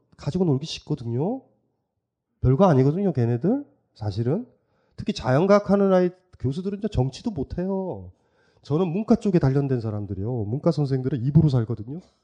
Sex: male